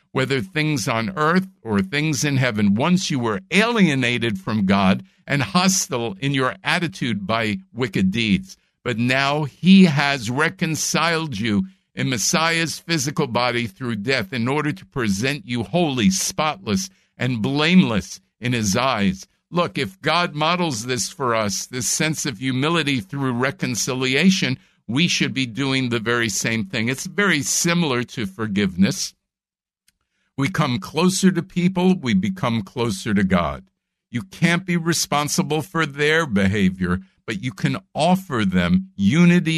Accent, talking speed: American, 145 wpm